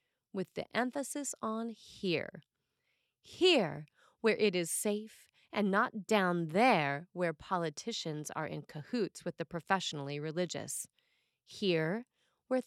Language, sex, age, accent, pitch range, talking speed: English, female, 30-49, American, 165-220 Hz, 120 wpm